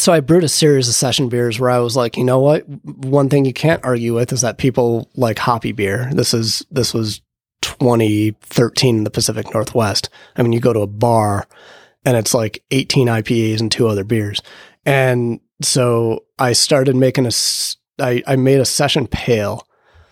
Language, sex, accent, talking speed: English, male, American, 190 wpm